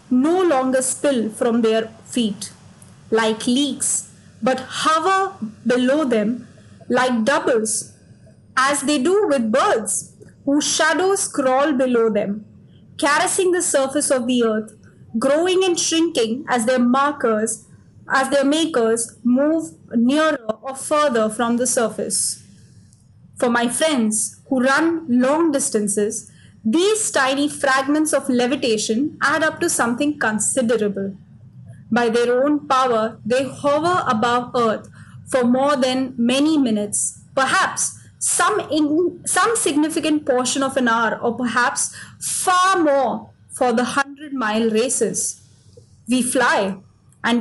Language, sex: English, female